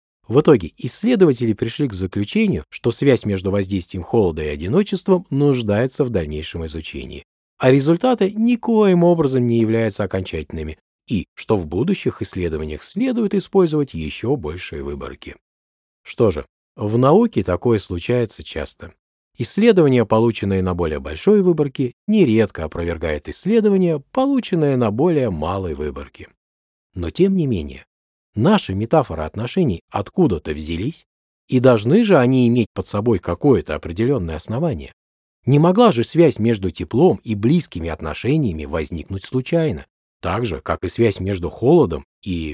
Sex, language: male, Russian